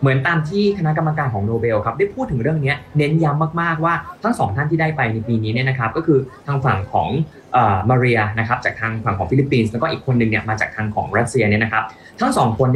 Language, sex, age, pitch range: Thai, male, 20-39, 115-150 Hz